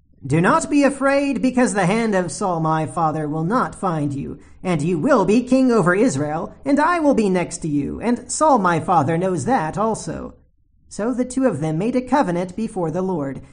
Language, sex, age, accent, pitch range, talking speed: English, male, 40-59, American, 165-260 Hz, 210 wpm